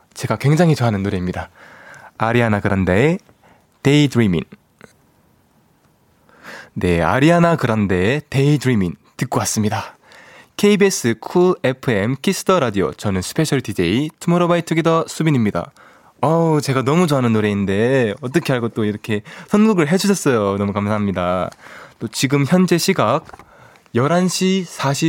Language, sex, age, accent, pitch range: Korean, male, 20-39, native, 105-165 Hz